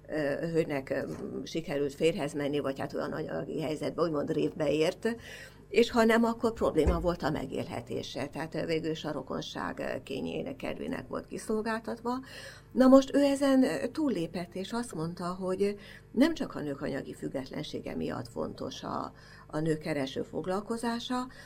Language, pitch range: Hungarian, 150-200 Hz